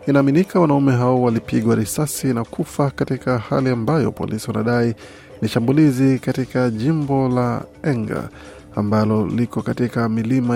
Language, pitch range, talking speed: Swahili, 115-135 Hz, 125 wpm